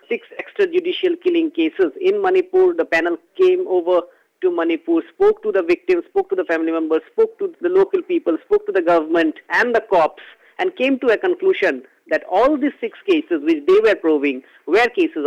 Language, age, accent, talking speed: English, 50-69, Indian, 195 wpm